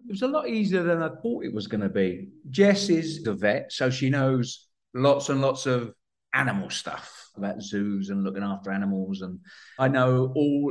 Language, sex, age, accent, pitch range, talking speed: English, male, 50-69, British, 115-155 Hz, 195 wpm